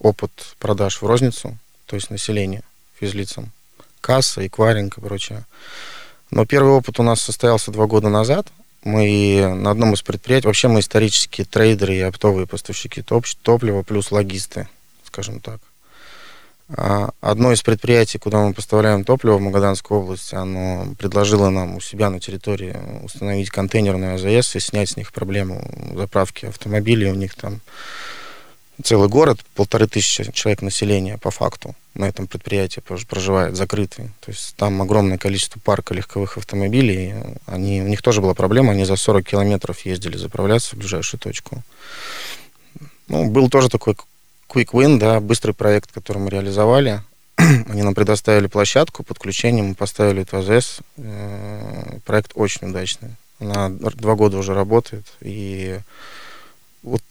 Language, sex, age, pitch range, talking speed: Russian, male, 20-39, 100-115 Hz, 145 wpm